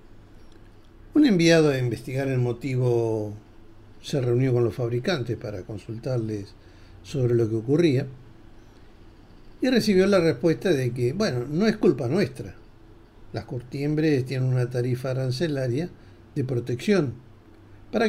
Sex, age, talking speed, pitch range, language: male, 50-69, 125 wpm, 110-160 Hz, Spanish